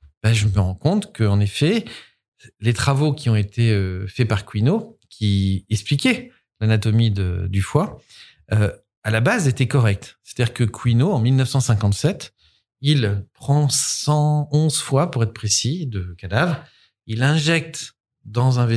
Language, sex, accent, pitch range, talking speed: French, male, French, 105-140 Hz, 145 wpm